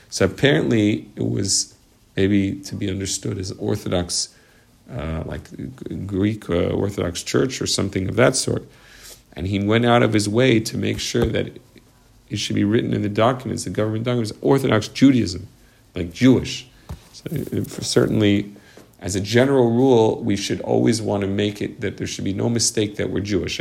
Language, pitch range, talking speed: English, 100-120 Hz, 170 wpm